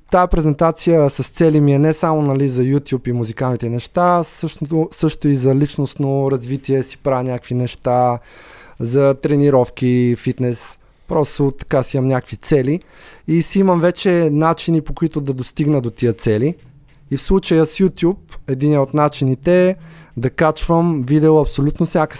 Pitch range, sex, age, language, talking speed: 125-150 Hz, male, 20-39, Bulgarian, 160 wpm